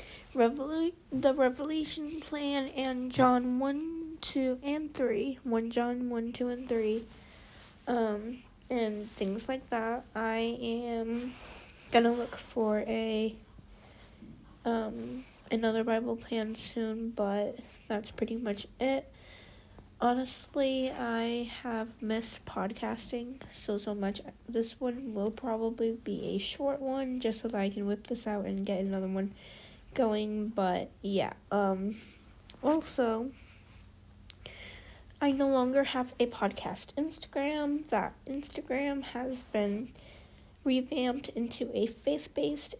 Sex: female